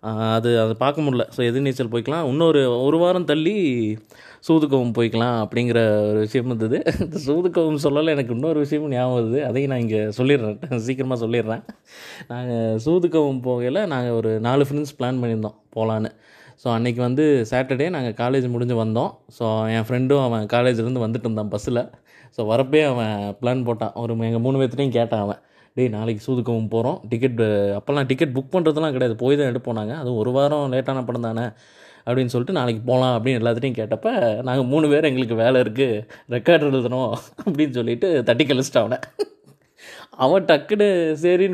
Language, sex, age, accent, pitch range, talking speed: Tamil, male, 20-39, native, 115-150 Hz, 160 wpm